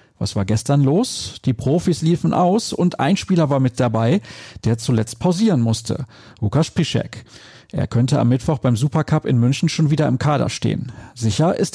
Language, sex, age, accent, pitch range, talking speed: German, male, 40-59, German, 120-160 Hz, 180 wpm